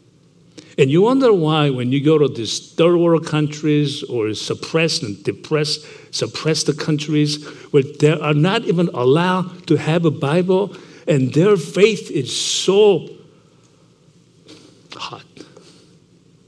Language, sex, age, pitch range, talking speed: English, male, 60-79, 140-170 Hz, 125 wpm